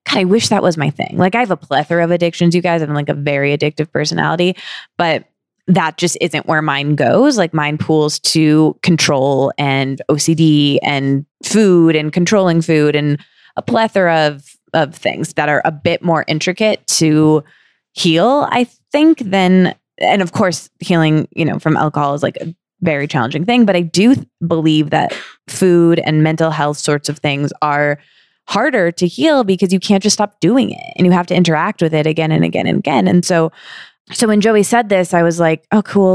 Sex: female